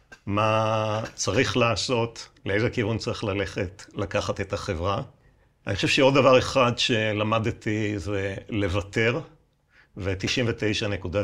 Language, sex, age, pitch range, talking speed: Hebrew, male, 60-79, 100-120 Hz, 100 wpm